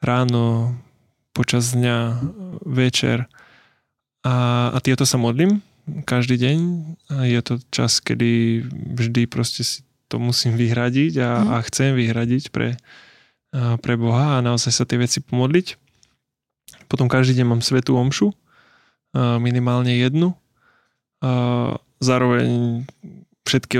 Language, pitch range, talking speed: Slovak, 120-130 Hz, 115 wpm